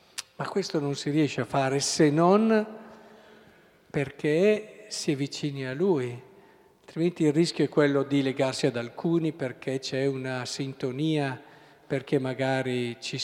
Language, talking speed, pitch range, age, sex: Italian, 140 wpm, 135-180 Hz, 50-69, male